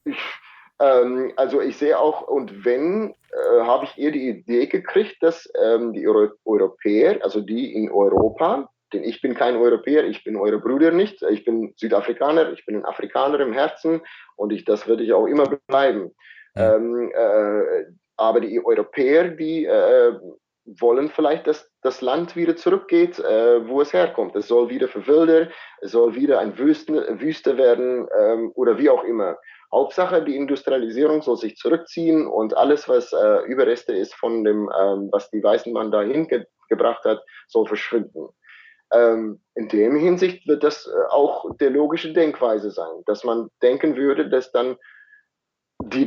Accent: German